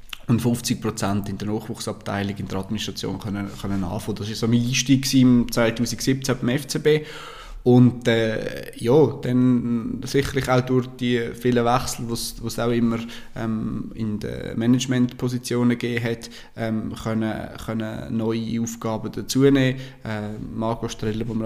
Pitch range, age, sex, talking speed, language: 110-120 Hz, 20-39, male, 140 wpm, German